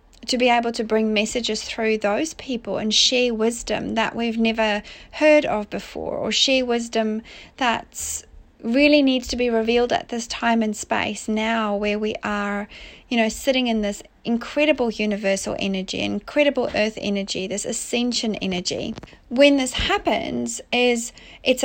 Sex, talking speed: female, 150 wpm